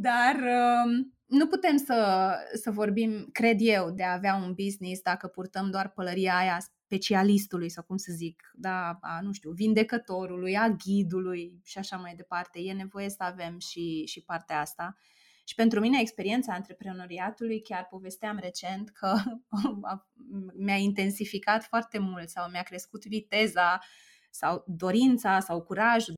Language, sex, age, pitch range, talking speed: Romanian, female, 20-39, 175-220 Hz, 140 wpm